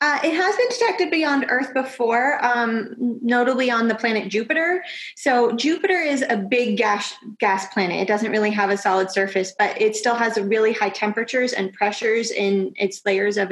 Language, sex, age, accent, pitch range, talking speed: English, female, 20-39, American, 205-245 Hz, 185 wpm